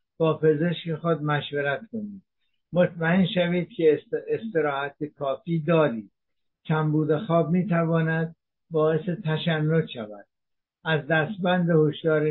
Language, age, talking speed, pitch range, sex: Persian, 60-79, 95 wpm, 150-175 Hz, male